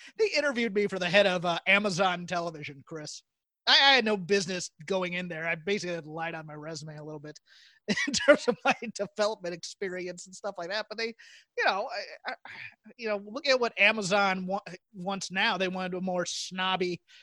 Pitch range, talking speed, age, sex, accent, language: 175-210 Hz, 205 wpm, 30-49, male, American, English